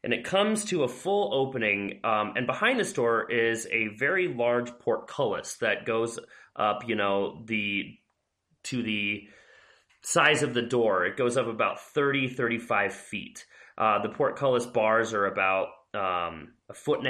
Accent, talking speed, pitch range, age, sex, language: American, 160 wpm, 115-155 Hz, 30-49, male, English